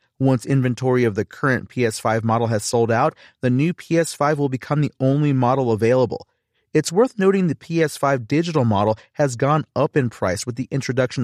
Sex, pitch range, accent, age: male, 120-155 Hz, American, 30-49